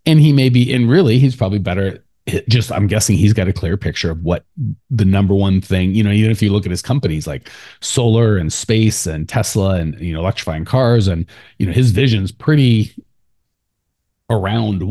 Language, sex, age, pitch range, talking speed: English, male, 30-49, 105-160 Hz, 200 wpm